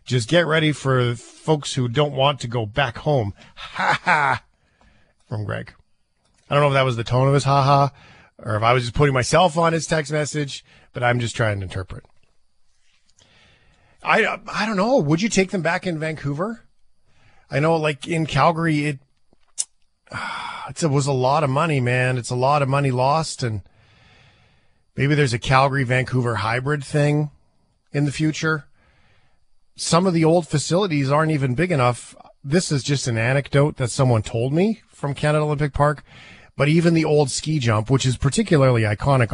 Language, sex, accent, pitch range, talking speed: English, male, American, 120-155 Hz, 180 wpm